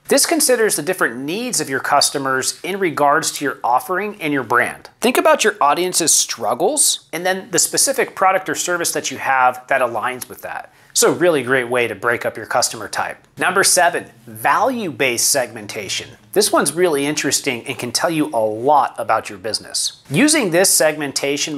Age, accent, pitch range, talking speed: 40-59, American, 140-185 Hz, 180 wpm